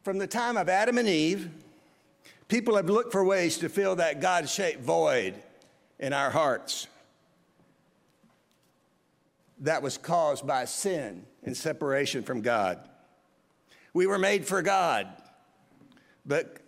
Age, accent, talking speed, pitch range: 60-79, American, 125 wpm, 165-225 Hz